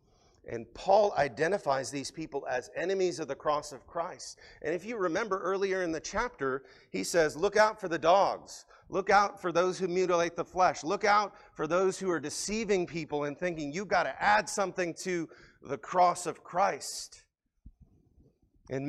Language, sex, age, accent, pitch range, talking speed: English, male, 40-59, American, 180-260 Hz, 180 wpm